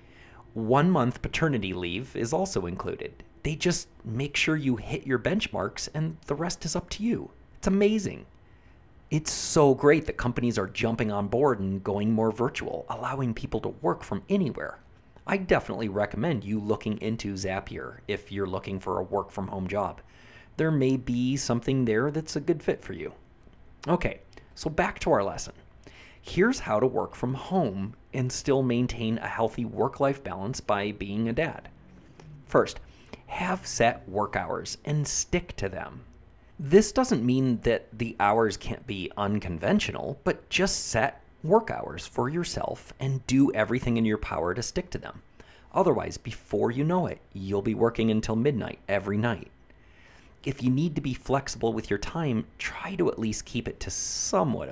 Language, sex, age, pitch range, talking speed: English, male, 30-49, 105-145 Hz, 170 wpm